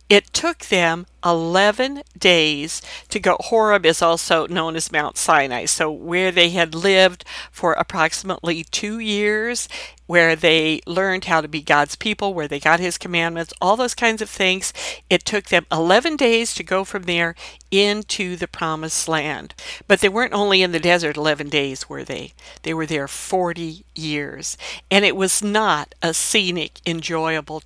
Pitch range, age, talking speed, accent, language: 160-205 Hz, 50-69, 165 wpm, American, English